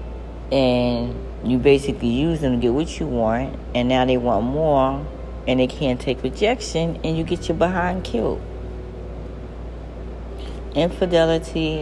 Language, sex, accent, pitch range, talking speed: English, female, American, 95-140 Hz, 135 wpm